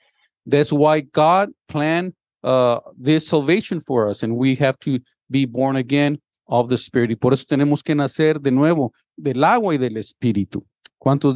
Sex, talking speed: male, 170 wpm